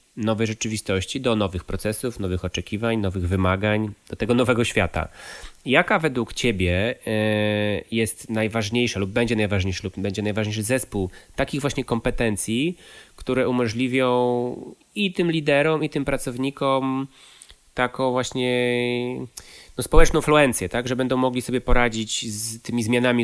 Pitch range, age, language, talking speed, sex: 105-125 Hz, 20-39, Polish, 120 wpm, male